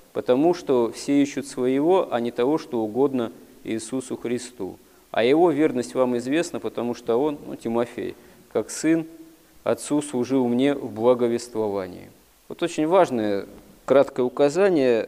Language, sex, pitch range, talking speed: Russian, male, 105-135 Hz, 135 wpm